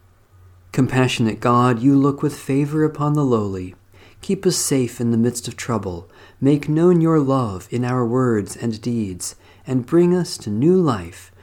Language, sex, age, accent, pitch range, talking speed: English, male, 40-59, American, 95-140 Hz, 170 wpm